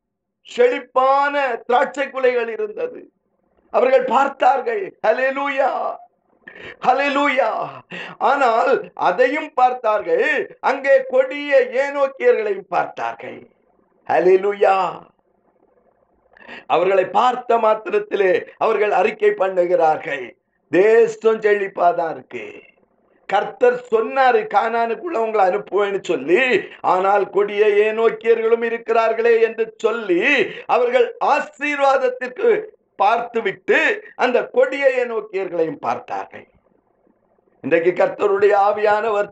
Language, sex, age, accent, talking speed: Tamil, male, 50-69, native, 65 wpm